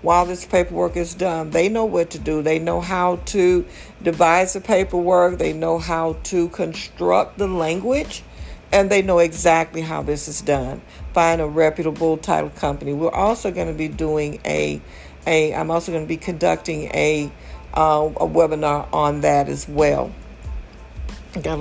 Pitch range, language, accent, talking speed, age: 150-185 Hz, English, American, 165 wpm, 60-79